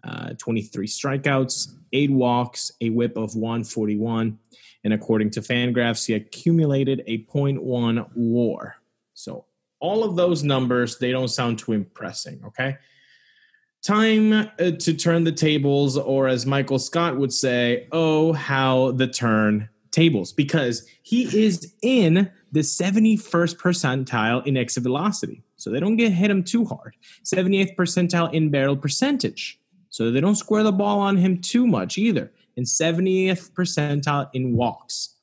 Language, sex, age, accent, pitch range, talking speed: English, male, 20-39, American, 120-175 Hz, 145 wpm